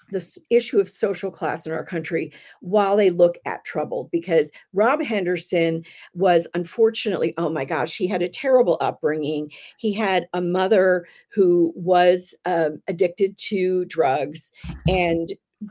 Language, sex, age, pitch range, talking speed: English, female, 50-69, 165-210 Hz, 140 wpm